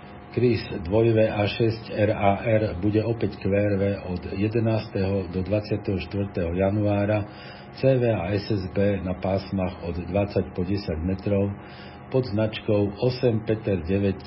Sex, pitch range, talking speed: male, 95-105 Hz, 110 wpm